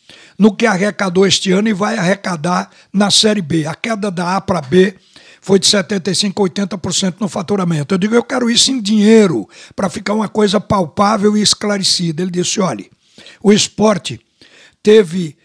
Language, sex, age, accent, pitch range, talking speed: Portuguese, male, 60-79, Brazilian, 185-220 Hz, 165 wpm